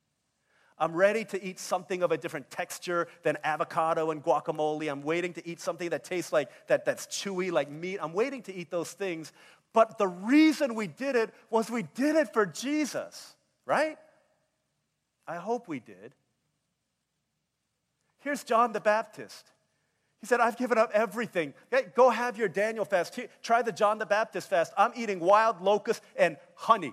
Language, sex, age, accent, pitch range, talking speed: English, male, 40-59, American, 180-255 Hz, 170 wpm